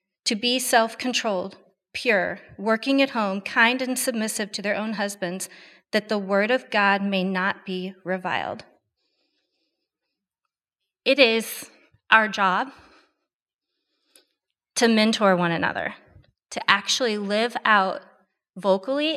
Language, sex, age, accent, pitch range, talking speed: English, female, 30-49, American, 205-260 Hz, 115 wpm